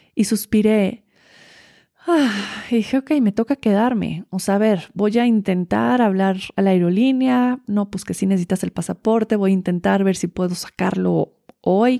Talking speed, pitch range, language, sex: 175 wpm, 190-230 Hz, Spanish, female